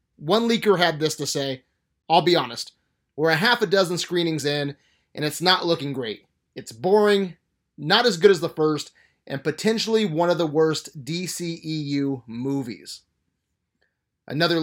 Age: 30-49